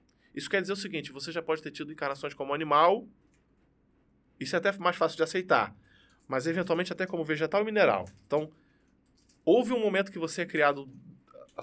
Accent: Brazilian